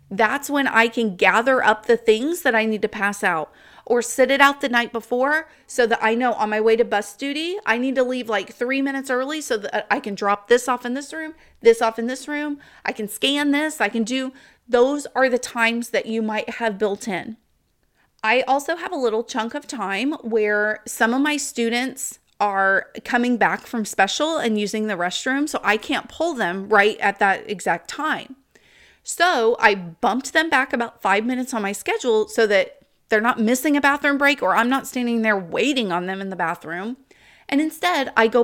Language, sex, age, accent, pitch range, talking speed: English, female, 30-49, American, 215-275 Hz, 215 wpm